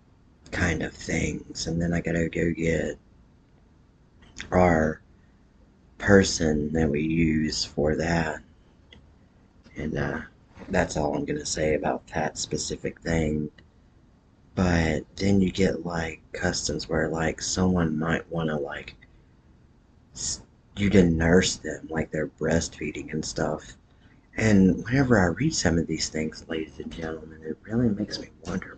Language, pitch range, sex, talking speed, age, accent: English, 80-95 Hz, male, 135 wpm, 40-59, American